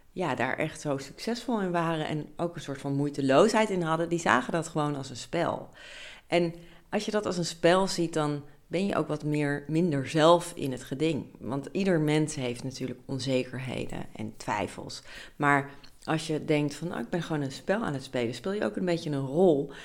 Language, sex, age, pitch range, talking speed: Dutch, female, 40-59, 135-160 Hz, 210 wpm